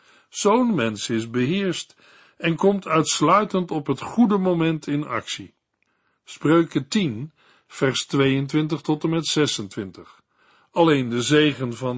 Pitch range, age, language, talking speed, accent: 130-170 Hz, 60-79, Dutch, 125 wpm, Dutch